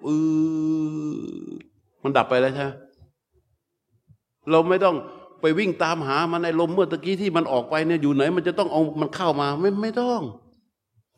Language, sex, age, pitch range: Thai, male, 60-79, 125-170 Hz